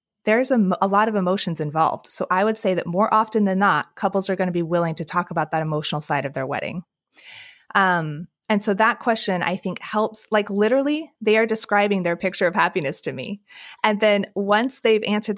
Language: English